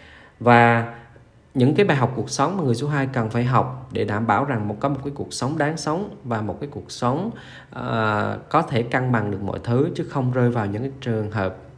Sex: male